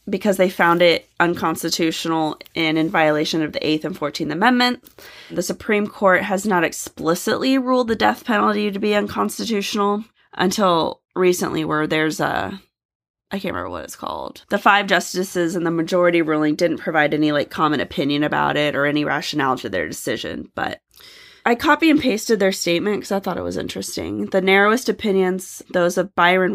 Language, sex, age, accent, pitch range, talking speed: English, female, 20-39, American, 155-195 Hz, 175 wpm